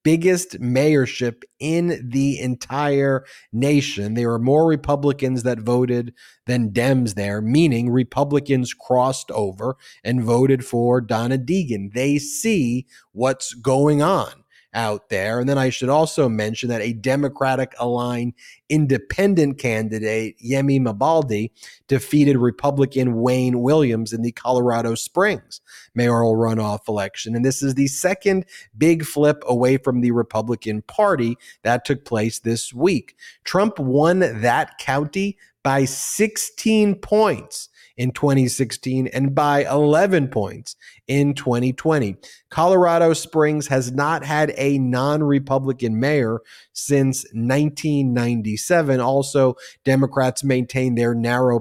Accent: American